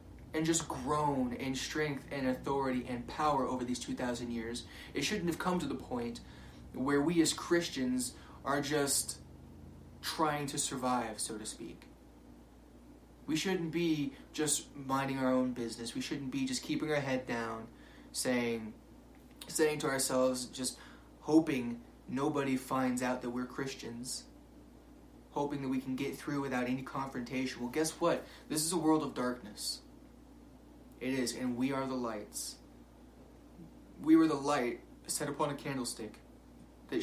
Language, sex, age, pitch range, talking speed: English, male, 20-39, 120-150 Hz, 150 wpm